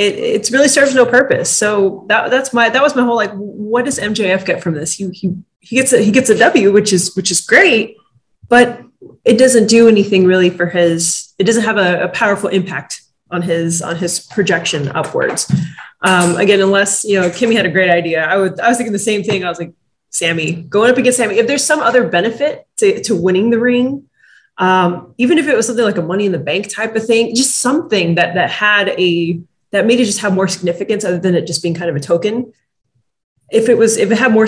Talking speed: 235 wpm